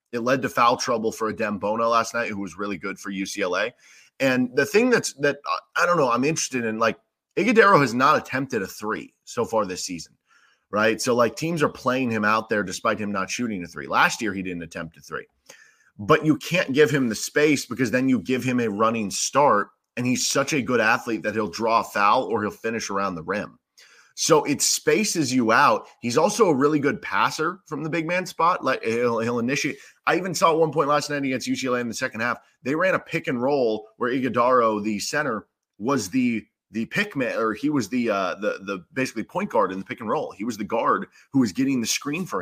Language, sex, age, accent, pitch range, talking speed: English, male, 30-49, American, 110-140 Hz, 235 wpm